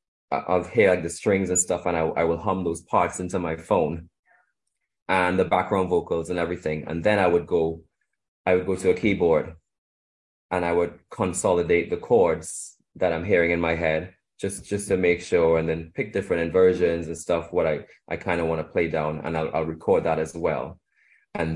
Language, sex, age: English, male, 20-39